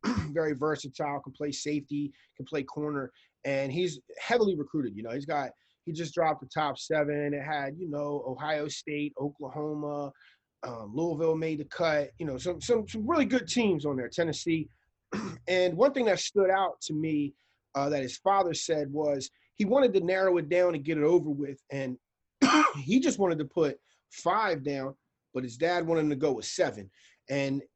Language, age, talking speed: English, 30-49, 190 wpm